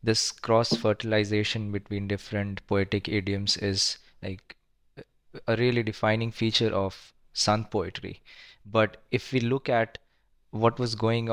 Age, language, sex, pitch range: 20-39, English, male, 100-115 Hz